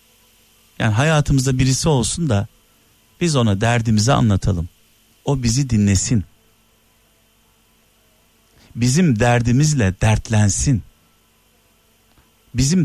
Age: 50-69